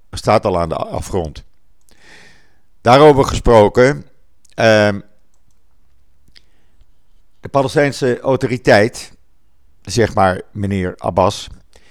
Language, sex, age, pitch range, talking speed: Dutch, male, 50-69, 90-115 Hz, 75 wpm